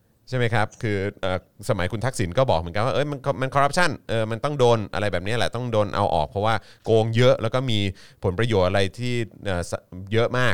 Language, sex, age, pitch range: Thai, male, 20-39, 105-135 Hz